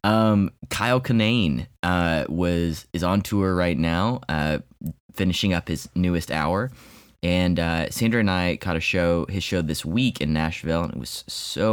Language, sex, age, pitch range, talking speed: English, male, 20-39, 80-100 Hz, 175 wpm